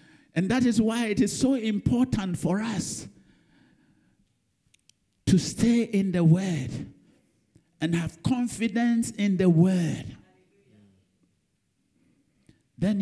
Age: 60-79